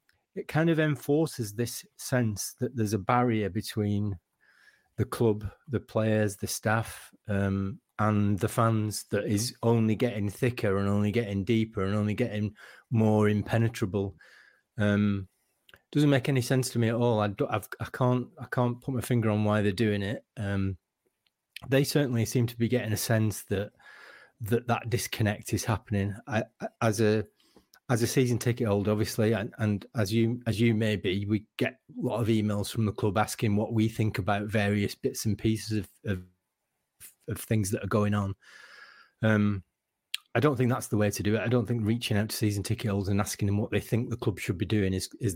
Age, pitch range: 30-49, 105-120 Hz